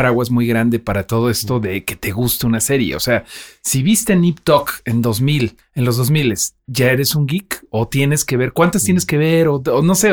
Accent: Mexican